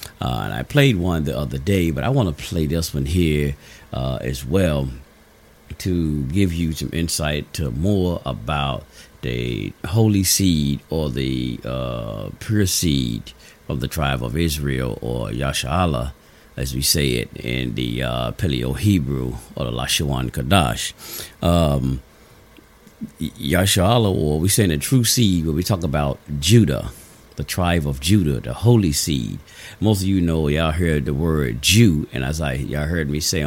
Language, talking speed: English, 165 wpm